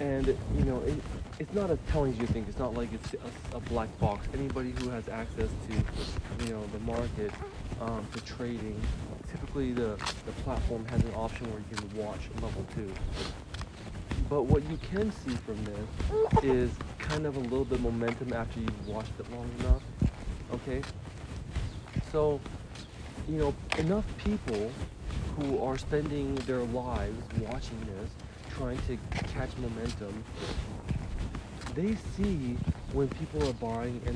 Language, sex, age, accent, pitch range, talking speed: English, male, 30-49, American, 95-130 Hz, 160 wpm